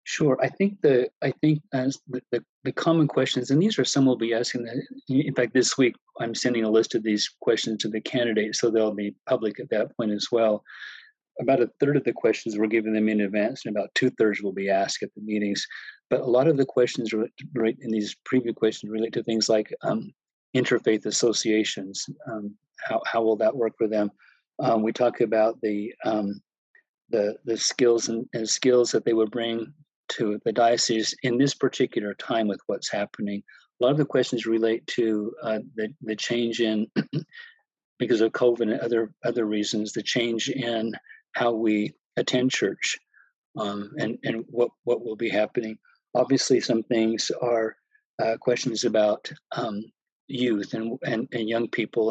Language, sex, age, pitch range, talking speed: English, male, 40-59, 110-125 Hz, 185 wpm